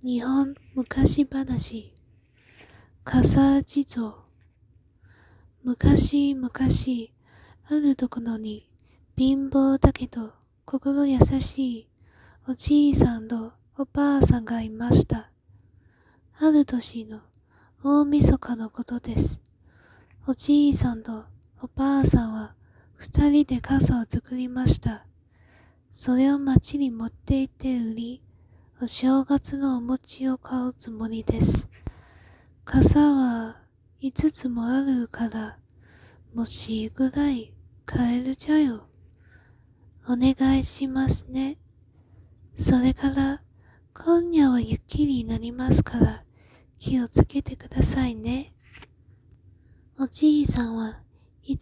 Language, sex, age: Japanese, female, 20-39